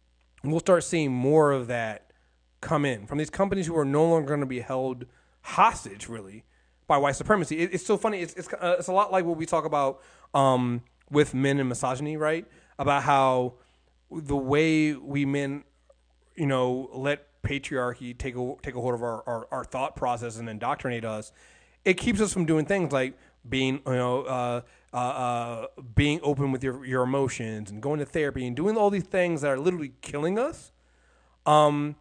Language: English